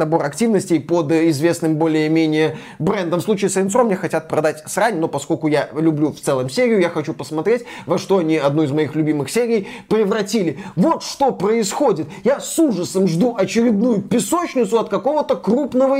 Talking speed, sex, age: 170 wpm, male, 20-39